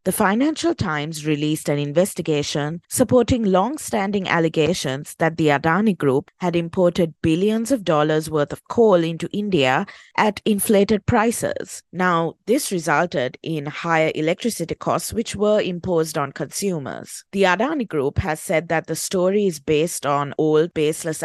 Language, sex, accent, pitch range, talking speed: English, female, Indian, 155-205 Hz, 145 wpm